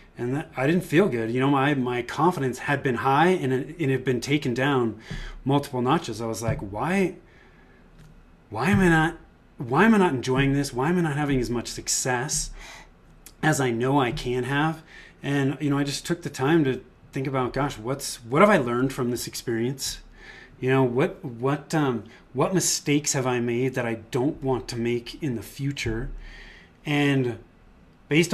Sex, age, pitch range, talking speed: male, 30-49, 120-150 Hz, 195 wpm